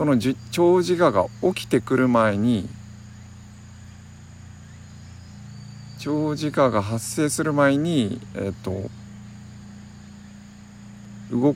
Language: Japanese